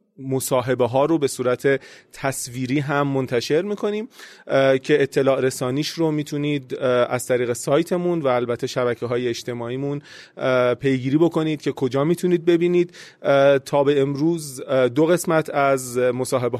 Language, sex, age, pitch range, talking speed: Persian, male, 30-49, 130-150 Hz, 125 wpm